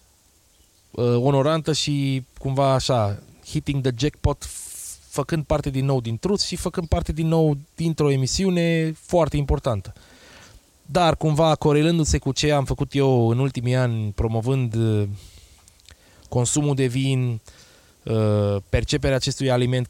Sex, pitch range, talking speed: male, 115-170 Hz, 130 wpm